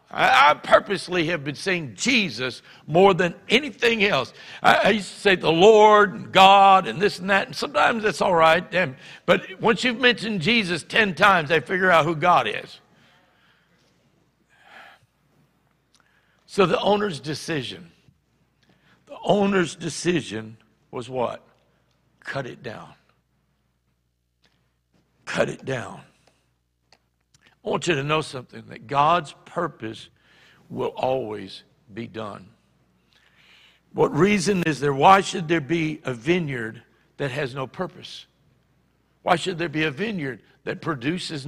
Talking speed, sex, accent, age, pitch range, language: 130 wpm, male, American, 60-79, 130-190 Hz, English